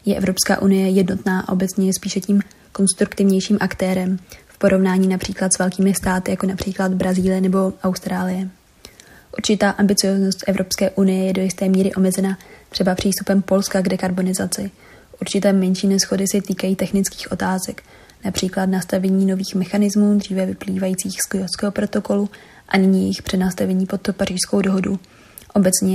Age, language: 20-39, Czech